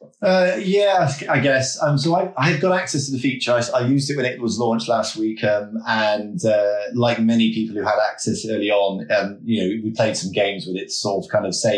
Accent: British